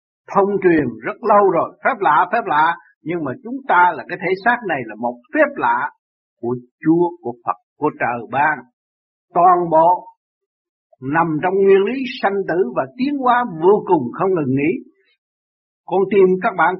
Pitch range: 155-250 Hz